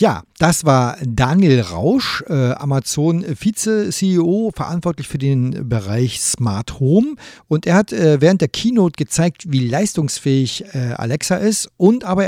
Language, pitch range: German, 140-195 Hz